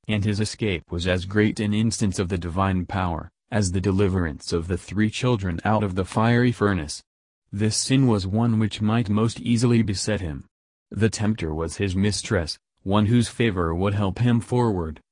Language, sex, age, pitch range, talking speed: English, male, 30-49, 95-110 Hz, 185 wpm